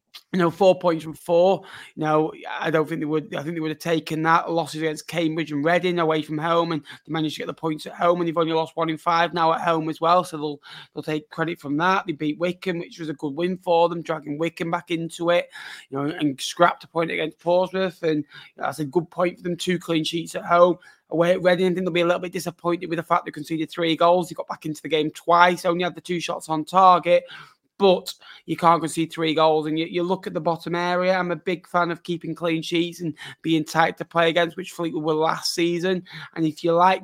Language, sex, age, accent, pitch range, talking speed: English, male, 20-39, British, 160-175 Hz, 260 wpm